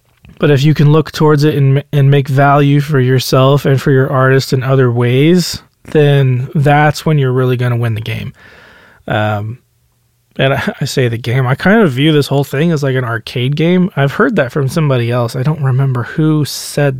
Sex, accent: male, American